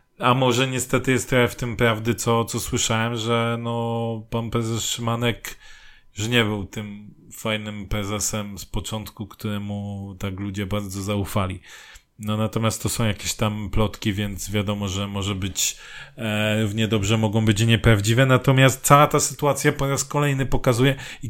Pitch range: 110-135 Hz